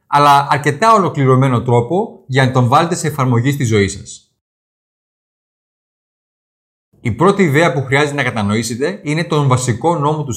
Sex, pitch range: male, 115-165 Hz